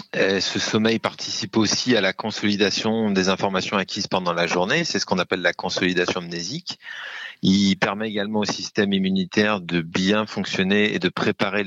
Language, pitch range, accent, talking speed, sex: French, 95-110 Hz, French, 165 wpm, male